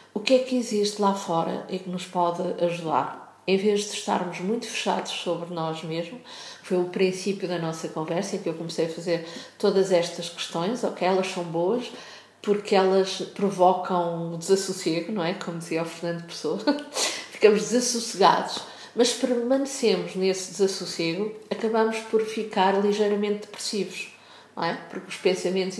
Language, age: Portuguese, 50-69